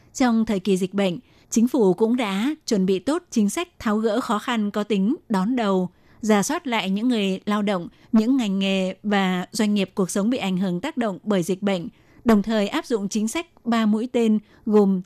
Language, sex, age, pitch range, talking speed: Vietnamese, female, 20-39, 190-230 Hz, 220 wpm